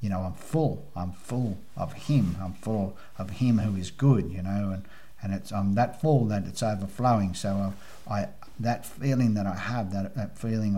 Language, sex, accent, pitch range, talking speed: English, male, Australian, 100-115 Hz, 205 wpm